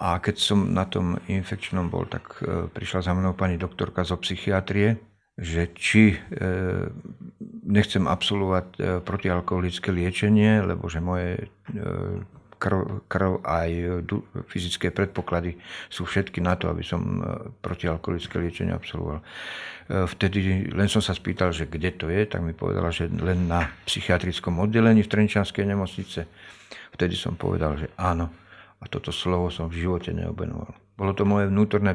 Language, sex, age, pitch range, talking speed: Slovak, male, 50-69, 90-100 Hz, 140 wpm